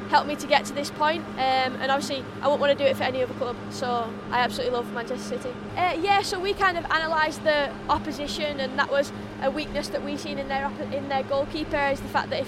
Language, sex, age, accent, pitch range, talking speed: English, female, 20-39, British, 265-290 Hz, 260 wpm